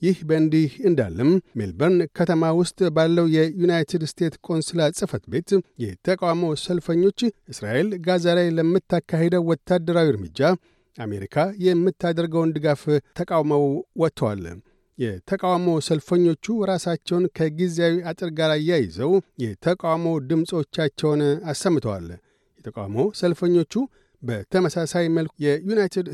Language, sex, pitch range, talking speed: Amharic, male, 155-180 Hz, 90 wpm